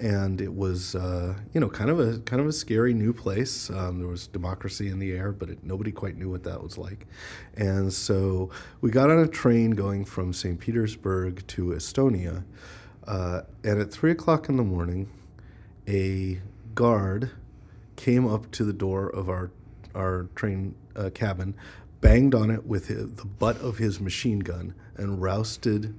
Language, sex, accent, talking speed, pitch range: English, male, American, 180 wpm, 90-110 Hz